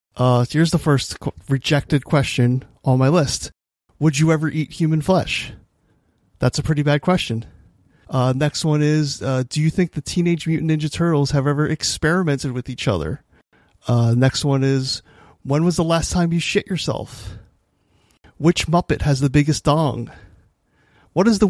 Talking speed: 175 wpm